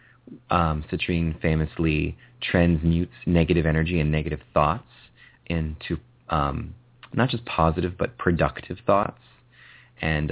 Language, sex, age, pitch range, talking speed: English, male, 30-49, 75-105 Hz, 105 wpm